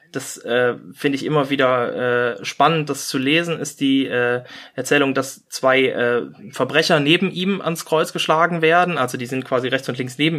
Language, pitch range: German, 130-155 Hz